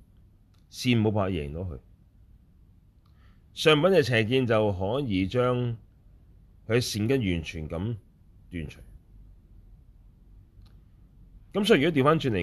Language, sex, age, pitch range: Chinese, male, 30-49, 90-110 Hz